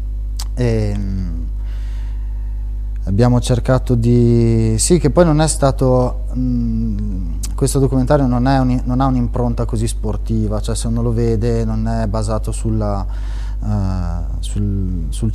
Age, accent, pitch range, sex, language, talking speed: 20-39, native, 105-120 Hz, male, Italian, 105 wpm